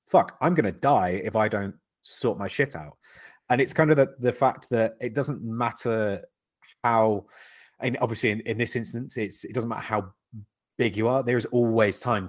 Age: 30-49